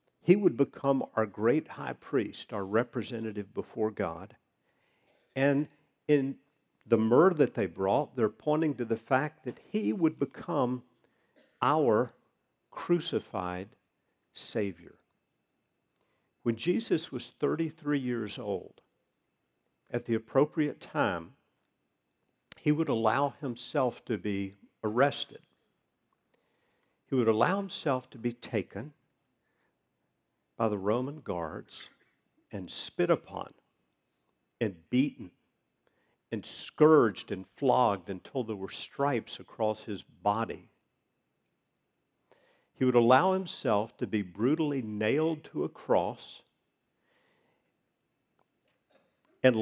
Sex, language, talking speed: male, English, 105 wpm